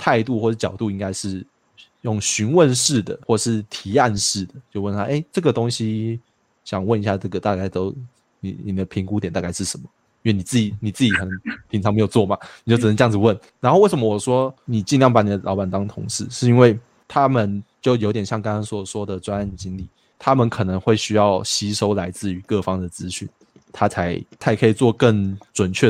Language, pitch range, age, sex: Chinese, 100-115 Hz, 20-39, male